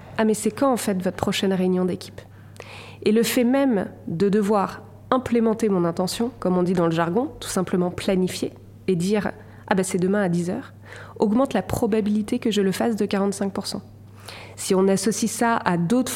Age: 20-39